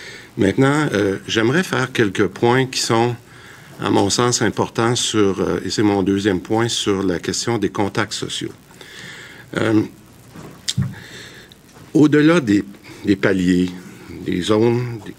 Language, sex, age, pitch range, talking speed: French, male, 50-69, 95-115 Hz, 130 wpm